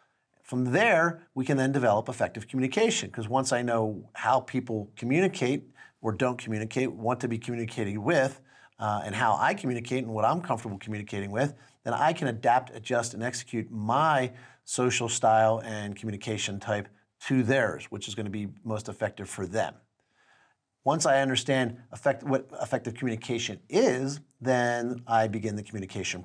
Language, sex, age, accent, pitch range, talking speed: English, male, 40-59, American, 110-135 Hz, 160 wpm